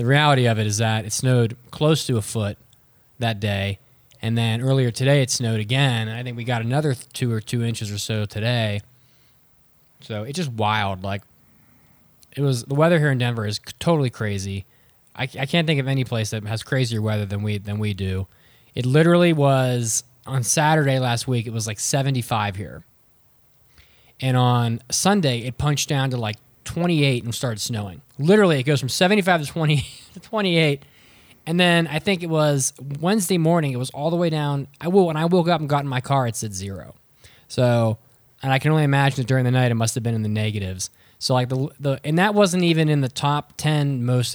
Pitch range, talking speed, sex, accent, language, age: 110-140 Hz, 210 wpm, male, American, English, 20-39